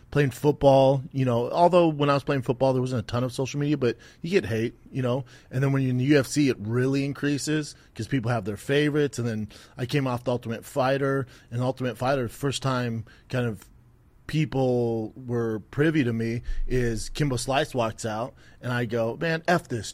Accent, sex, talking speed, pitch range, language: American, male, 210 wpm, 115-140 Hz, English